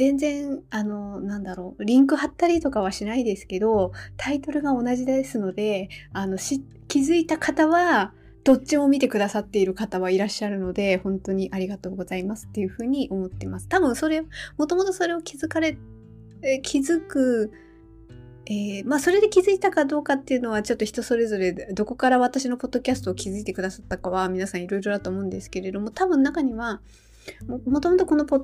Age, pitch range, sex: 20-39, 190-285 Hz, female